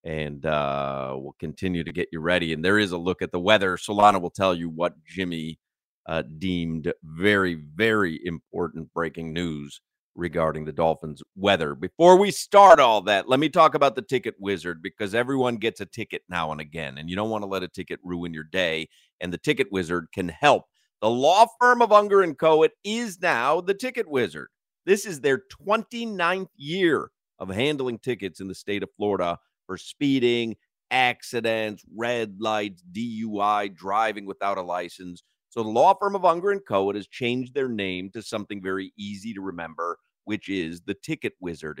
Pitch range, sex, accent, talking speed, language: 90-145 Hz, male, American, 185 wpm, English